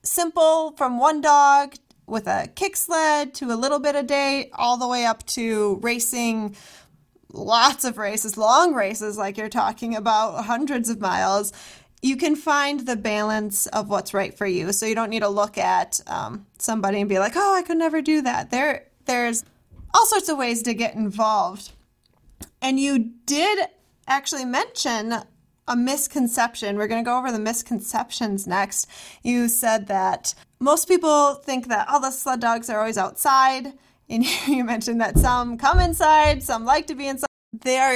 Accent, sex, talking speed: American, female, 175 wpm